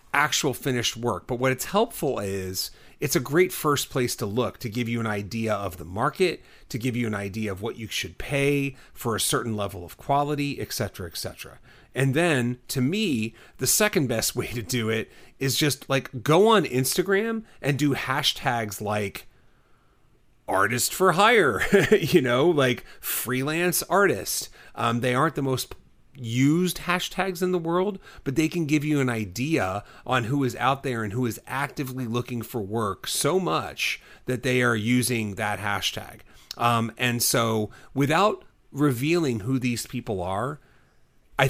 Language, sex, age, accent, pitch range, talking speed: English, male, 30-49, American, 110-145 Hz, 170 wpm